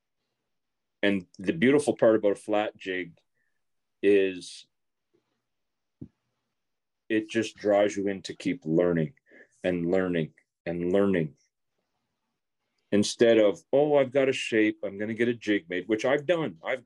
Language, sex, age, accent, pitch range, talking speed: English, male, 40-59, American, 90-120 Hz, 140 wpm